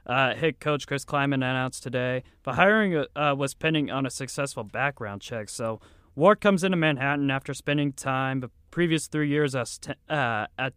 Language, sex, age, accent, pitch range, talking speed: English, male, 30-49, American, 120-150 Hz, 185 wpm